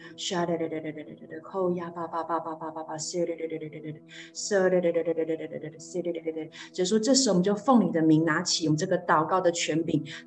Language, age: Chinese, 30-49